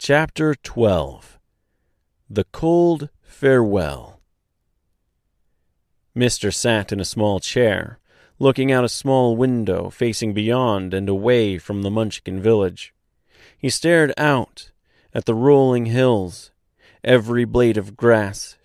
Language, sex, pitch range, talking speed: English, male, 100-125 Hz, 115 wpm